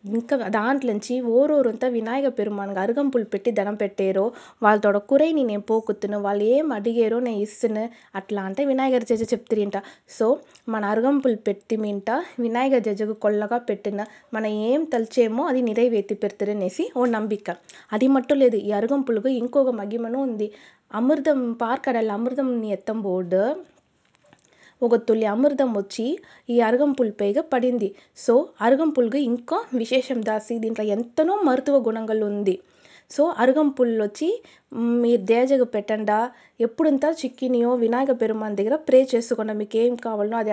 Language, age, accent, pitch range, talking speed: Telugu, 20-39, native, 215-260 Hz, 125 wpm